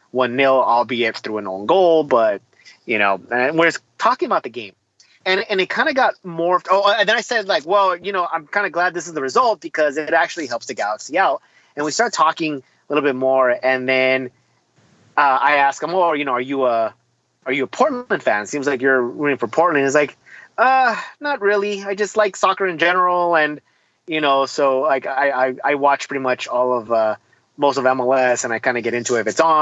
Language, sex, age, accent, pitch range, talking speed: English, male, 30-49, American, 130-185 Hz, 240 wpm